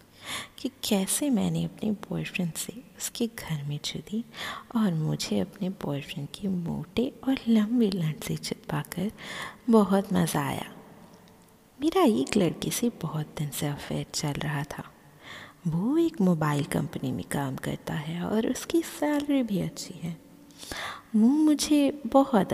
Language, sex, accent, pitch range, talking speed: Hindi, female, native, 165-235 Hz, 140 wpm